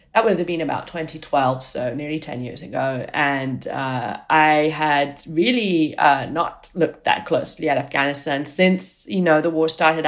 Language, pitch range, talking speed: English, 145-170 Hz, 175 wpm